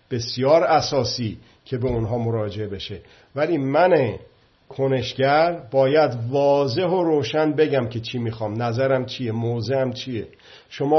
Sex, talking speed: male, 125 wpm